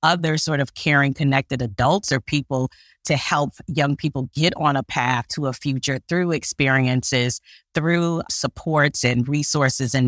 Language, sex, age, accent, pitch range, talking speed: English, female, 30-49, American, 135-155 Hz, 155 wpm